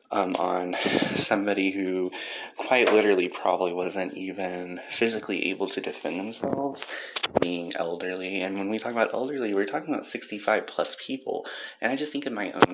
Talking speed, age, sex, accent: 165 wpm, 20-39, male, American